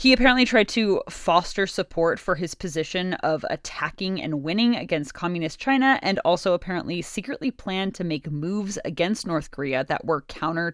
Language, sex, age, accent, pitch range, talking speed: English, female, 20-39, American, 160-215 Hz, 170 wpm